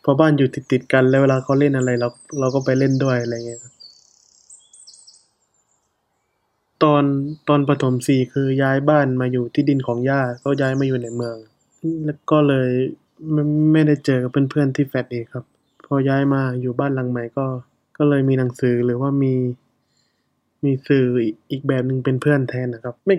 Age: 20-39